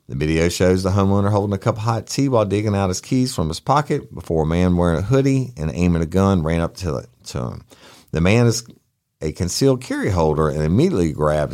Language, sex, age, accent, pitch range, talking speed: English, male, 50-69, American, 90-140 Hz, 230 wpm